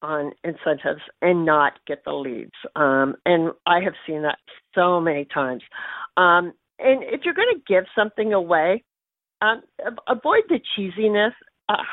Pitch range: 175-220 Hz